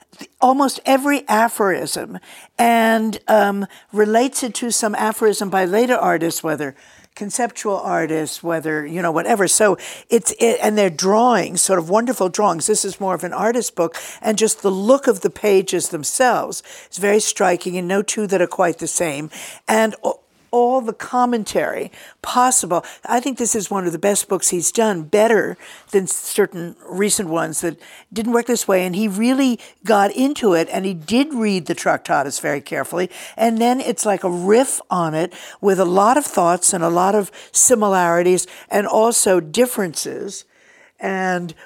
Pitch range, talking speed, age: 175-230 Hz, 170 wpm, 60-79